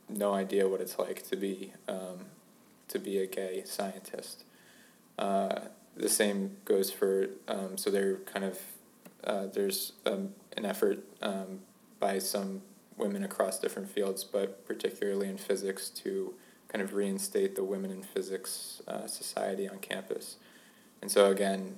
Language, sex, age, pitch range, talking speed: English, male, 20-39, 95-105 Hz, 150 wpm